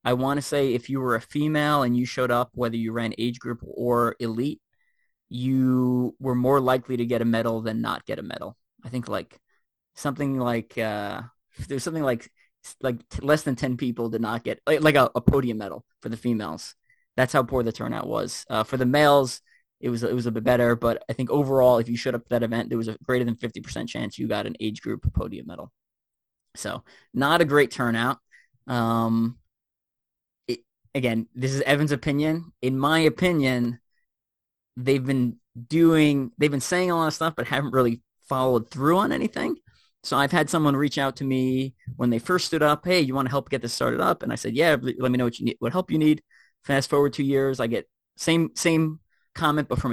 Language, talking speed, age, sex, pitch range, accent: English, 215 wpm, 20-39, male, 120-145 Hz, American